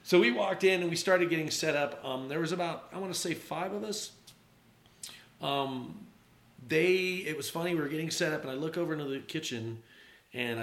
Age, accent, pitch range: 40-59, American, 115-160 Hz